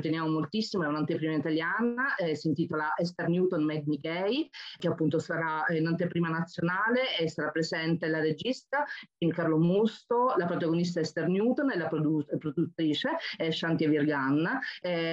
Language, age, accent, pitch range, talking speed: Italian, 30-49, native, 160-190 Hz, 150 wpm